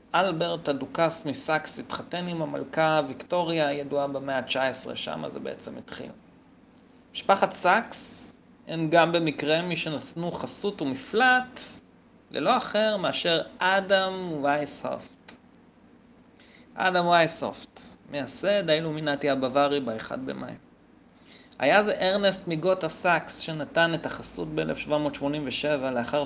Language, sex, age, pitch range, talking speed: Hebrew, male, 30-49, 140-185 Hz, 100 wpm